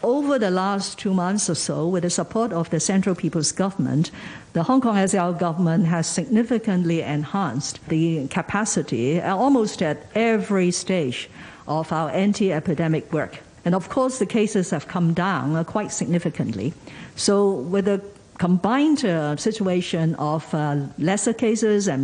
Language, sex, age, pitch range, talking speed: English, female, 50-69, 110-180 Hz, 145 wpm